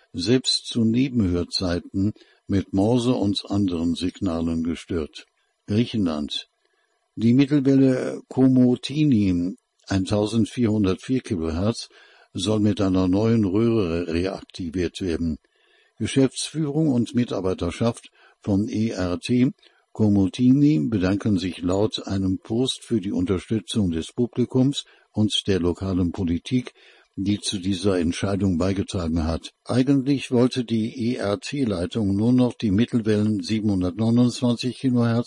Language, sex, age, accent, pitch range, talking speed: German, male, 60-79, German, 95-120 Hz, 95 wpm